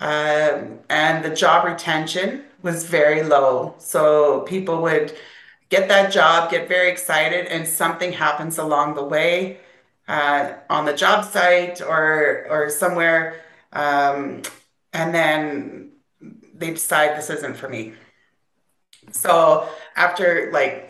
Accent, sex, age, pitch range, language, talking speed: American, female, 30-49, 155-195 Hz, English, 125 wpm